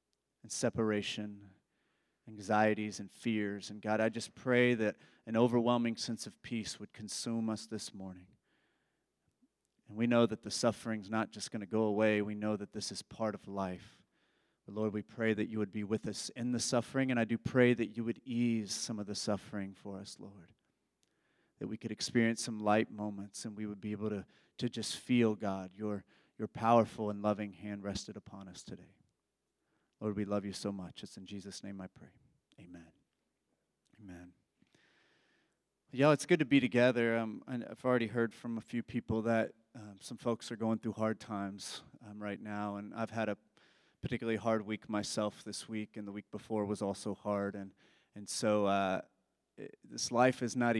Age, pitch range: 30-49, 105-115 Hz